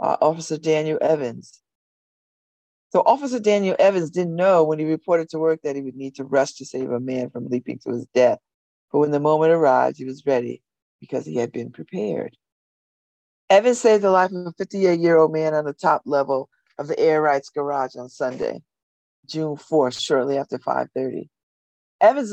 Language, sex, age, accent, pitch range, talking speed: English, female, 50-69, American, 135-165 Hz, 185 wpm